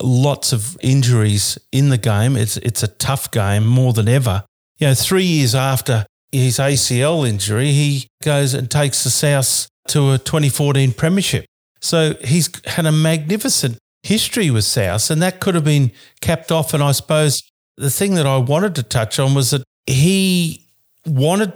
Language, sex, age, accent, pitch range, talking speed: English, male, 50-69, Australian, 115-145 Hz, 175 wpm